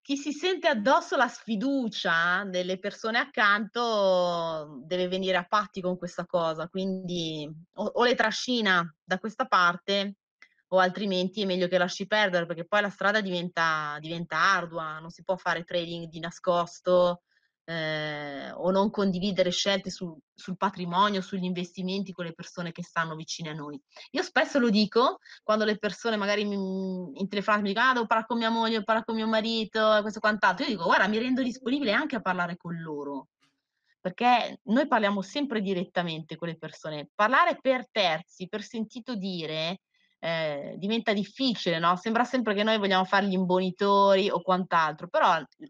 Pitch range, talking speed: 175-220 Hz, 170 wpm